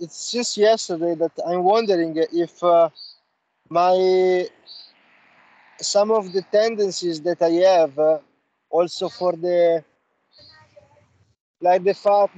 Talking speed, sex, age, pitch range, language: 110 wpm, male, 20-39, 170-200 Hz, English